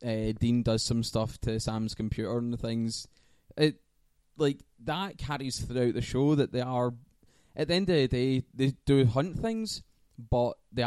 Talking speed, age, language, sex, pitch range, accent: 180 wpm, 20-39, English, male, 110-130 Hz, British